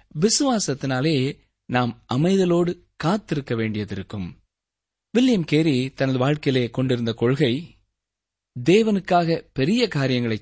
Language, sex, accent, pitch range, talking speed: Tamil, male, native, 115-170 Hz, 85 wpm